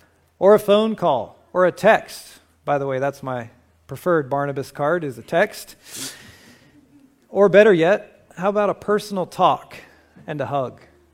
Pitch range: 130-170 Hz